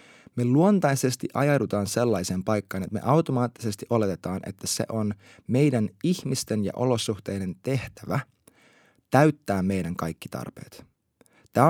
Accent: native